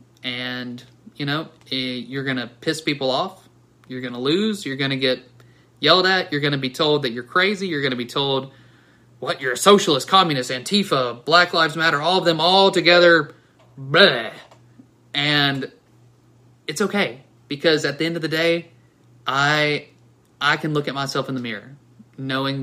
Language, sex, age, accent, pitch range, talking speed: English, male, 30-49, American, 120-145 Hz, 180 wpm